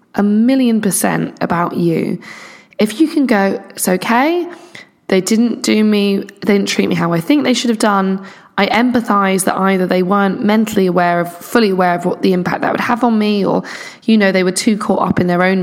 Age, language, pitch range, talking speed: 10-29, English, 185-230 Hz, 220 wpm